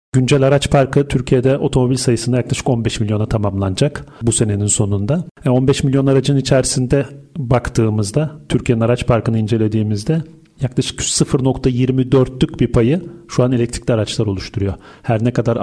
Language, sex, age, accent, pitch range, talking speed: Turkish, male, 40-59, native, 115-140 Hz, 135 wpm